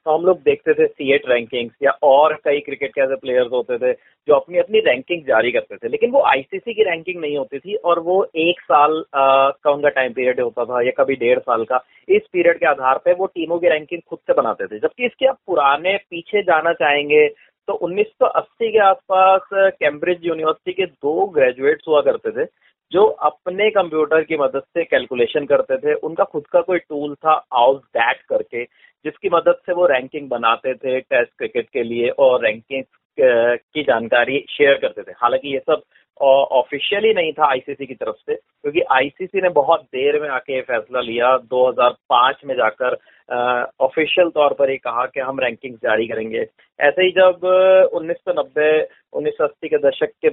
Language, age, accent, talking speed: Hindi, 30-49, native, 185 wpm